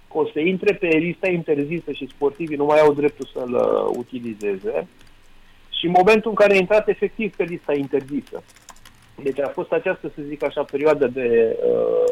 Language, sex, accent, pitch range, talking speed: Romanian, male, native, 145-195 Hz, 175 wpm